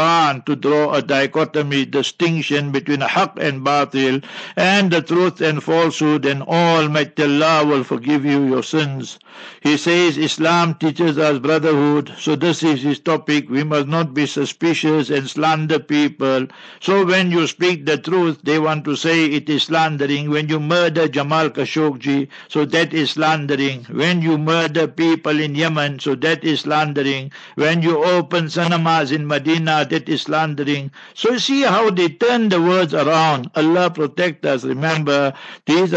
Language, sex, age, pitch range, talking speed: English, male, 60-79, 145-165 Hz, 160 wpm